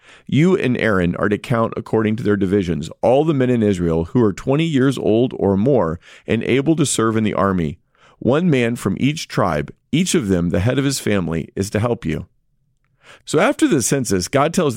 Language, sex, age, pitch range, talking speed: English, male, 40-59, 105-140 Hz, 210 wpm